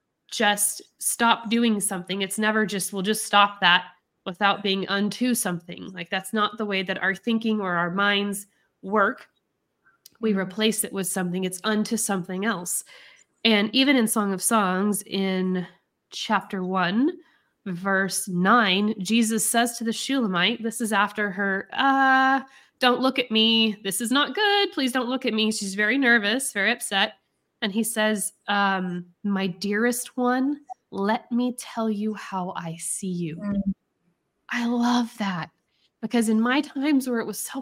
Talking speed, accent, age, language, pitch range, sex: 160 wpm, American, 20-39, English, 190-235 Hz, female